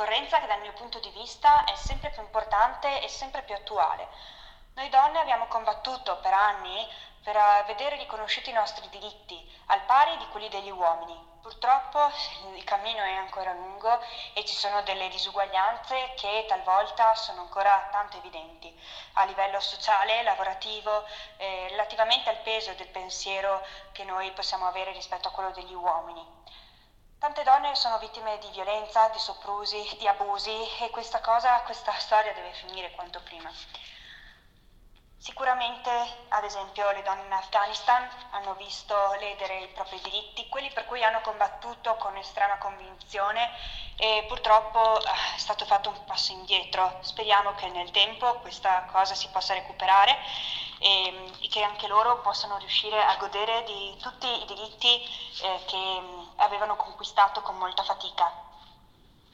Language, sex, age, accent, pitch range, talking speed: Italian, female, 20-39, native, 190-225 Hz, 145 wpm